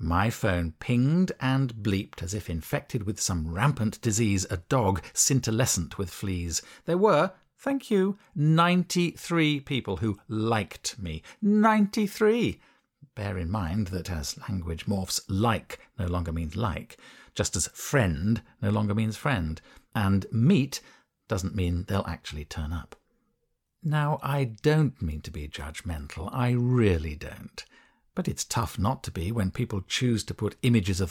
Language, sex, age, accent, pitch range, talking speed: English, male, 50-69, British, 95-140 Hz, 150 wpm